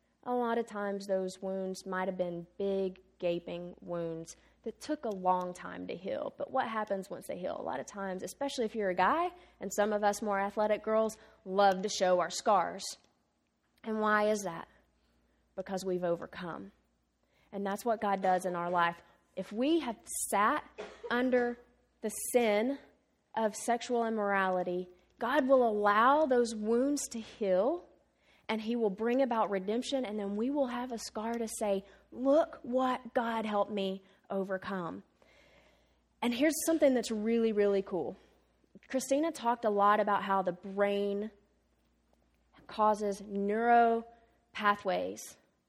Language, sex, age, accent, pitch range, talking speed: English, female, 20-39, American, 190-235 Hz, 150 wpm